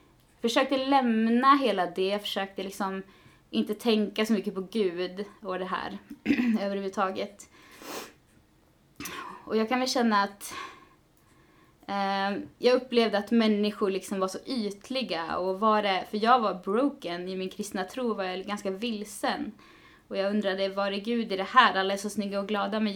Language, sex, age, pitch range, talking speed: Swedish, female, 20-39, 190-230 Hz, 160 wpm